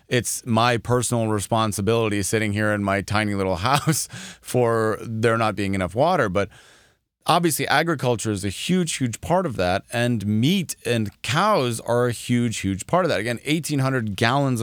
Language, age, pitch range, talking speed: English, 30-49, 105-130 Hz, 170 wpm